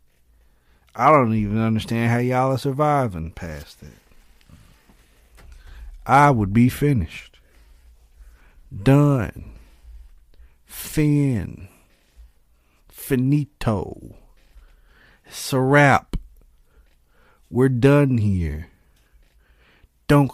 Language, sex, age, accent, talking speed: English, male, 50-69, American, 65 wpm